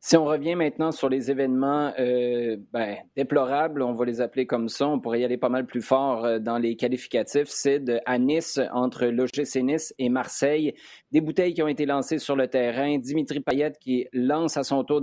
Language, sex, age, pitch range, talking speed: French, male, 30-49, 125-145 Hz, 210 wpm